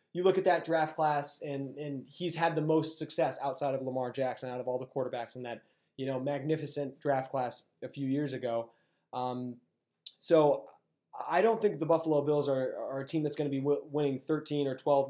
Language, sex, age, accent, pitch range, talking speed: English, male, 20-39, American, 125-160 Hz, 215 wpm